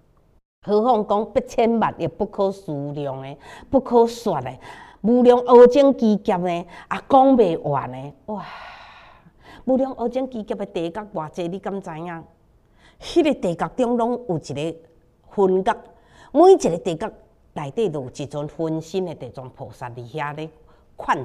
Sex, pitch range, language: female, 160-235 Hz, Chinese